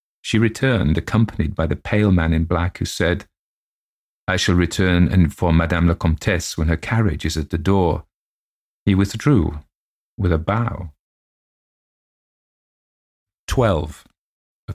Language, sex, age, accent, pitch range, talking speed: English, male, 40-59, British, 85-110 Hz, 130 wpm